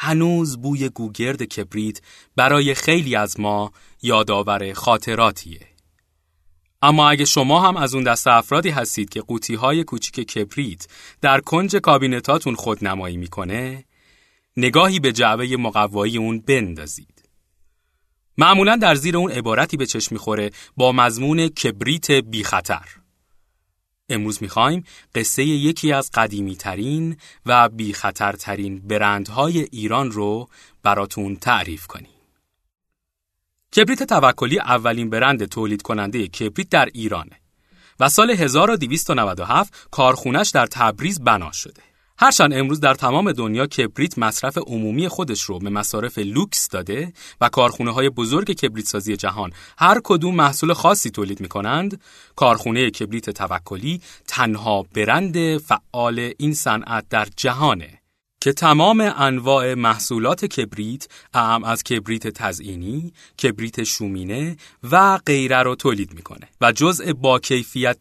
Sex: male